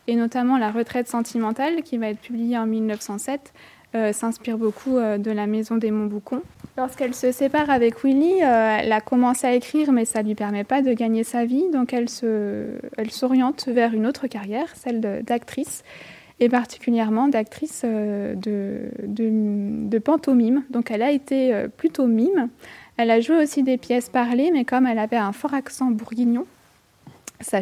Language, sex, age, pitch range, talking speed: French, female, 20-39, 220-255 Hz, 180 wpm